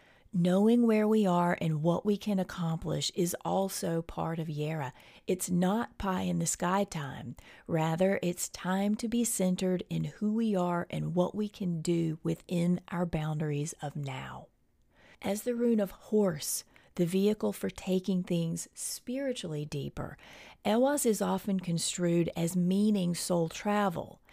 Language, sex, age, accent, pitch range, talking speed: English, female, 40-59, American, 165-210 Hz, 145 wpm